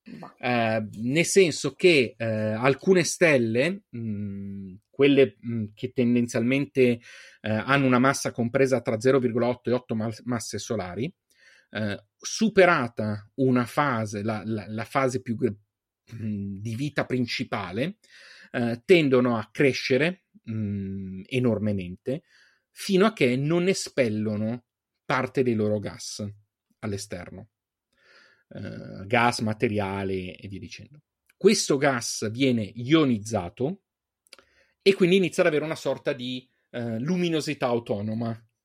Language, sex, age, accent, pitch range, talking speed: Italian, male, 30-49, native, 110-140 Hz, 105 wpm